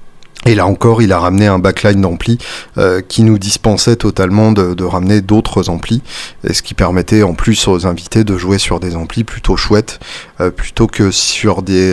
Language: French